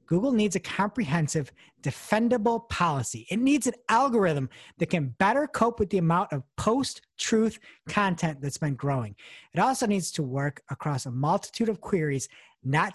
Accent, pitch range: American, 140-205 Hz